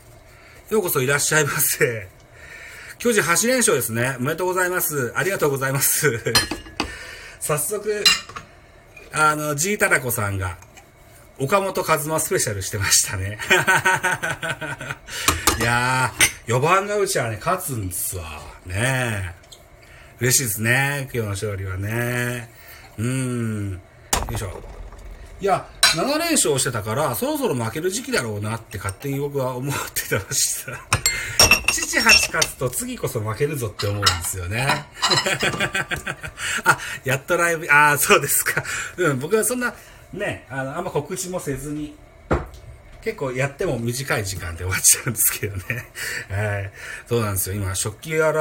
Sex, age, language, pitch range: male, 40-59, Japanese, 110-160 Hz